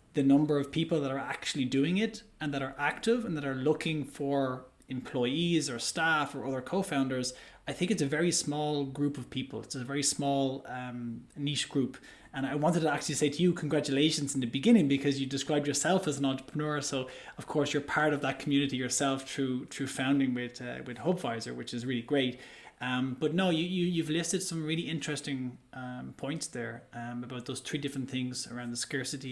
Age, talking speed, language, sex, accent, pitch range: 20-39, 205 wpm, English, male, Irish, 130-155 Hz